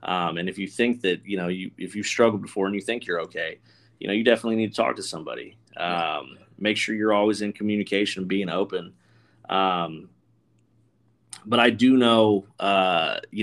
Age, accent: 30-49, American